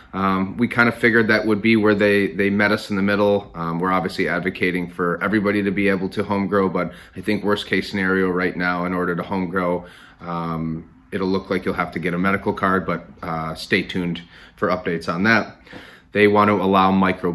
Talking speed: 225 wpm